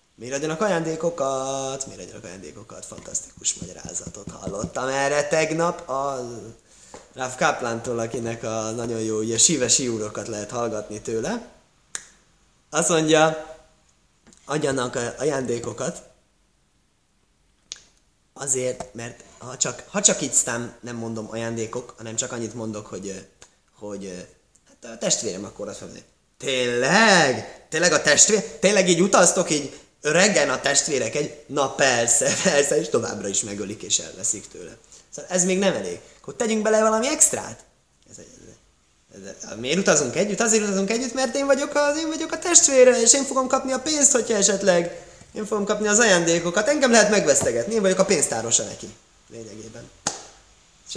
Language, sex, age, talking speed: Hungarian, male, 20-39, 140 wpm